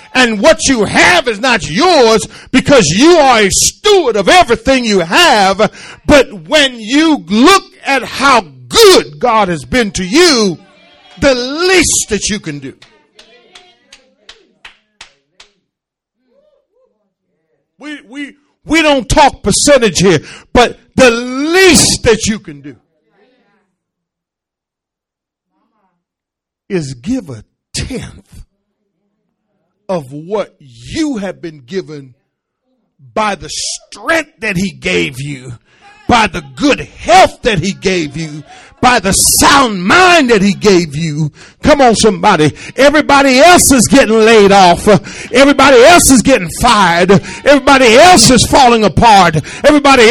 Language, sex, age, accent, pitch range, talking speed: English, male, 50-69, American, 190-285 Hz, 120 wpm